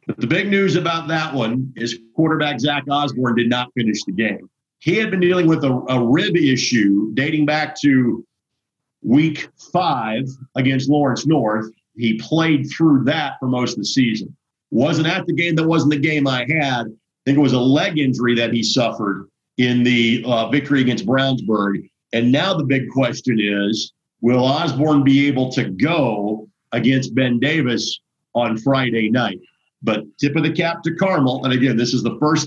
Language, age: English, 50-69